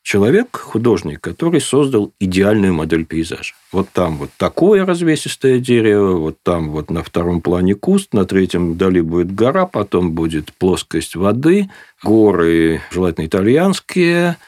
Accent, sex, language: native, male, Russian